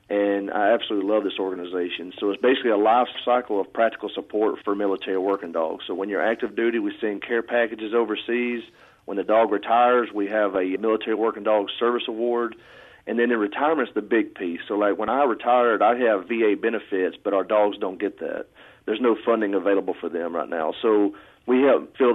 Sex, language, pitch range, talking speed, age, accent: male, English, 100-120 Hz, 205 wpm, 40-59, American